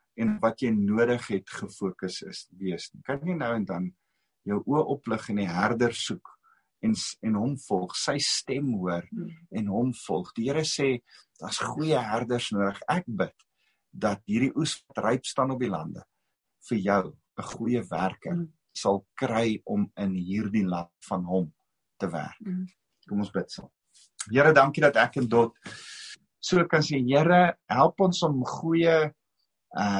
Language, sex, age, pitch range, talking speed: English, male, 50-69, 110-165 Hz, 160 wpm